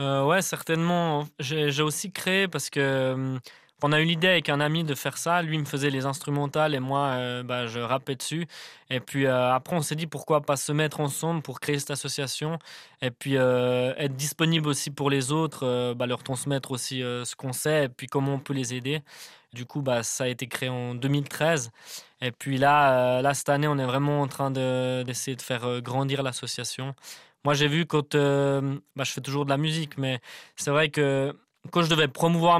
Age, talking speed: 20-39, 220 wpm